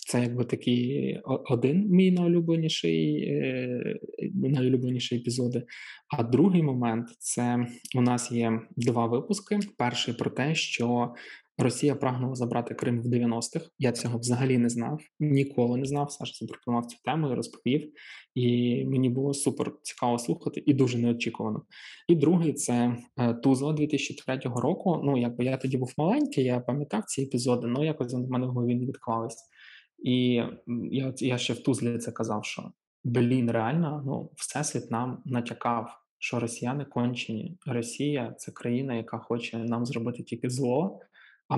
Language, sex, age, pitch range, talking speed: Ukrainian, male, 20-39, 120-135 Hz, 145 wpm